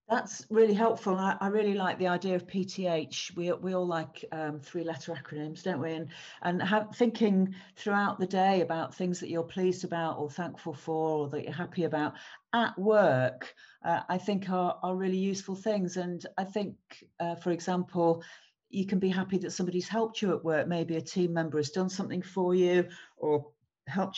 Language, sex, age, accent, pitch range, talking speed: English, female, 40-59, British, 165-195 Hz, 195 wpm